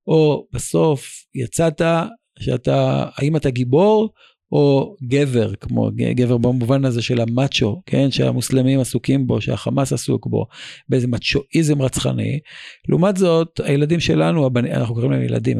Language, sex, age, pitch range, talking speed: Hebrew, male, 50-69, 115-140 Hz, 130 wpm